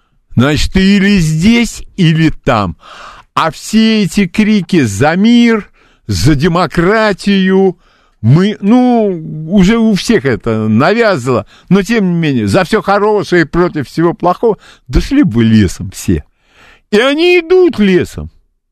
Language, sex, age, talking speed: Russian, male, 50-69, 125 wpm